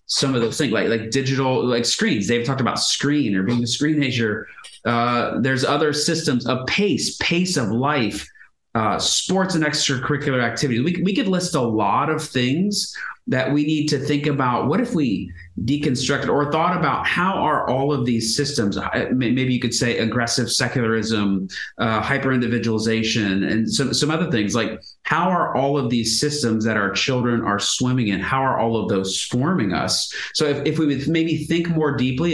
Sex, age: male, 30-49